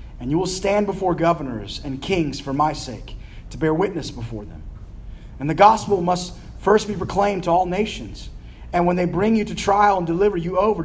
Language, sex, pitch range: English, male, 110-170 Hz